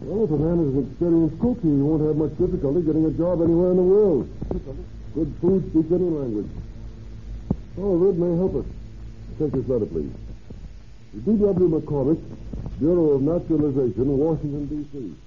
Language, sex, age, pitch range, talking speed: English, female, 60-79, 110-170 Hz, 160 wpm